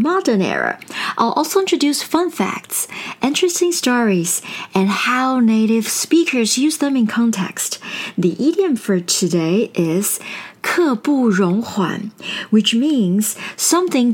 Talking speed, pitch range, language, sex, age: 105 wpm, 190-250 Hz, English, female, 50-69